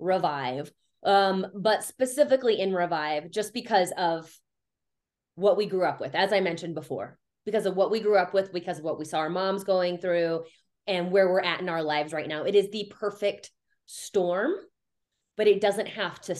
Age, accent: 20-39, American